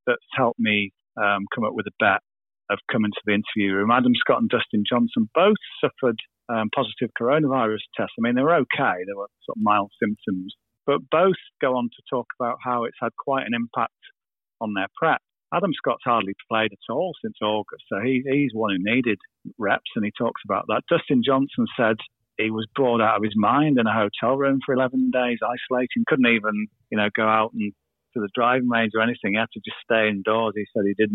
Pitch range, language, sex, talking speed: 110-140 Hz, English, male, 220 wpm